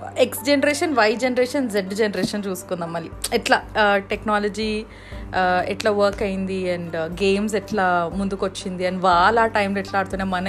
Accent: native